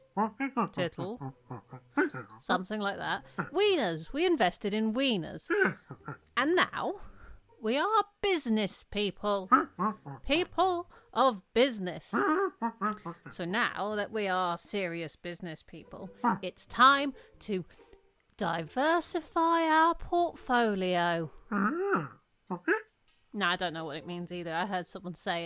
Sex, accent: female, British